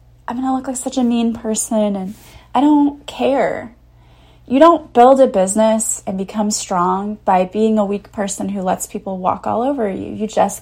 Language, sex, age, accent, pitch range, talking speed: English, female, 20-39, American, 195-235 Hz, 200 wpm